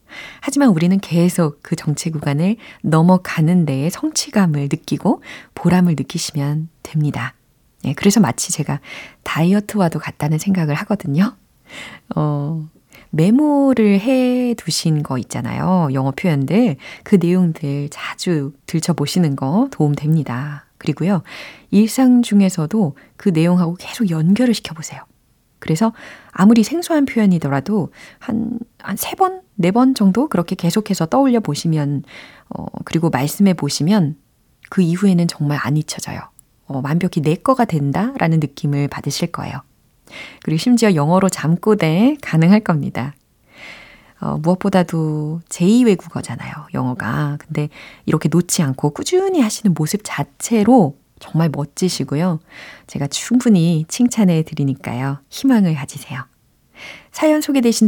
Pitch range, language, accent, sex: 150-220 Hz, Korean, native, female